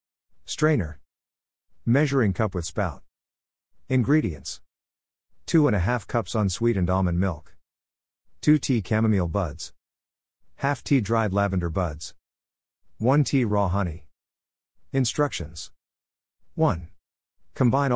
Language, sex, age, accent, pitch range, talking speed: English, male, 50-69, American, 75-110 Hz, 100 wpm